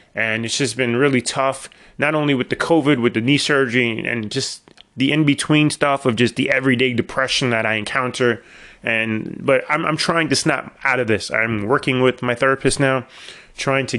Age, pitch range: 30-49, 120-145 Hz